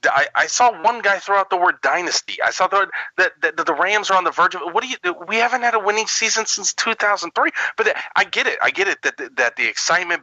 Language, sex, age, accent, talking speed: English, male, 30-49, American, 275 wpm